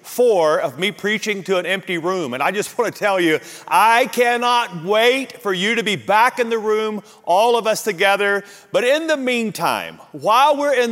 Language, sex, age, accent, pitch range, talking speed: English, male, 40-59, American, 180-215 Hz, 205 wpm